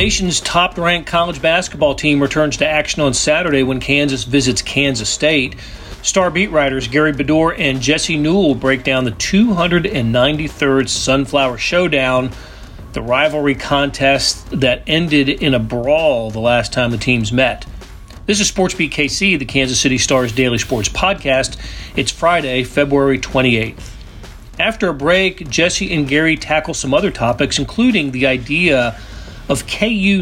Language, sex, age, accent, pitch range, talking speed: English, male, 40-59, American, 130-170 Hz, 150 wpm